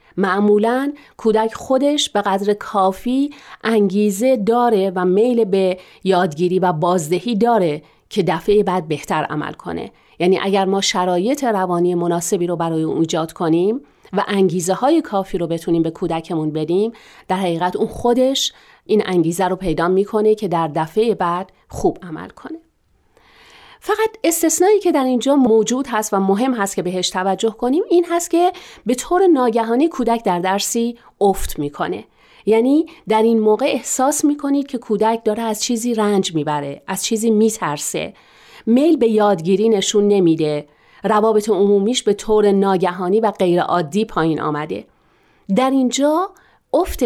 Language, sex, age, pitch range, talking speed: Persian, female, 40-59, 185-240 Hz, 145 wpm